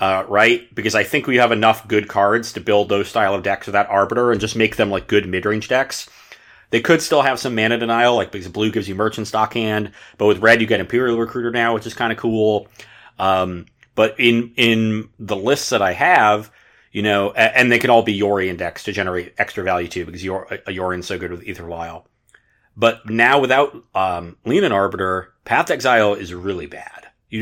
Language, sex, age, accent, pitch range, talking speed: English, male, 30-49, American, 100-115 Hz, 215 wpm